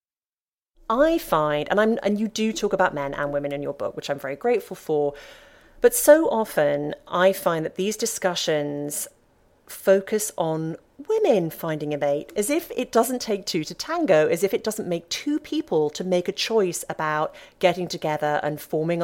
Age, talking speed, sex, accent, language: 40-59, 185 wpm, female, British, English